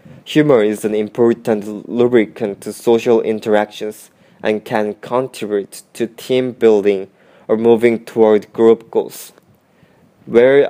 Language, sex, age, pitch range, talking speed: English, male, 20-39, 105-115 Hz, 105 wpm